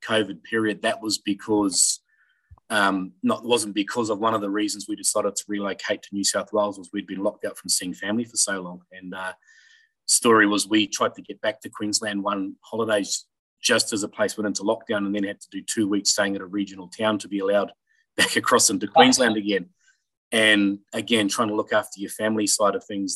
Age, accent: 30-49, Australian